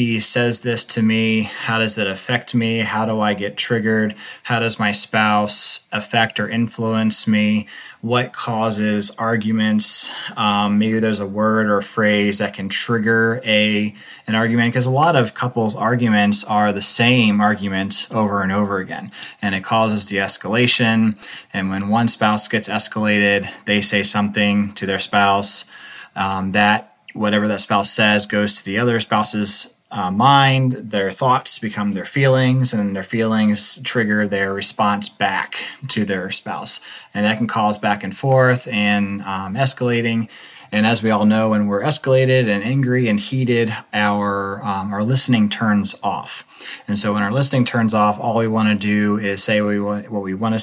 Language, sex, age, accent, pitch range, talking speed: English, male, 20-39, American, 105-115 Hz, 175 wpm